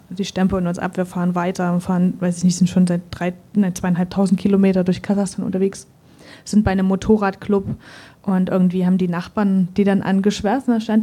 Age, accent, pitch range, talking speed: 20-39, German, 185-210 Hz, 185 wpm